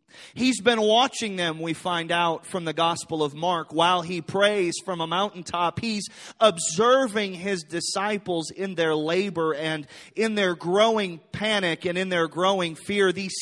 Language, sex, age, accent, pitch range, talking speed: English, male, 30-49, American, 170-225 Hz, 160 wpm